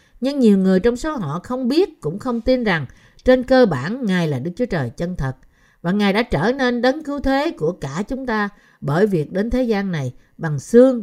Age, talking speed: 60-79, 230 wpm